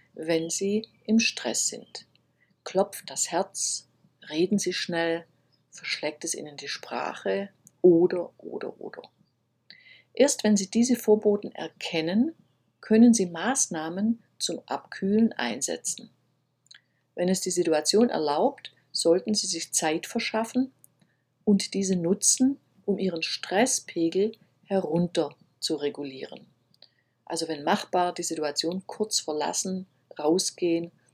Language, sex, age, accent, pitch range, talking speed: German, female, 50-69, German, 165-220 Hz, 110 wpm